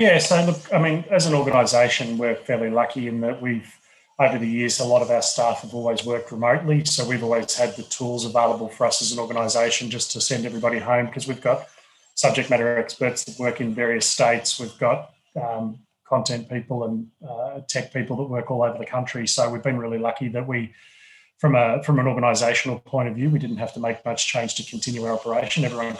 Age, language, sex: 30-49, English, male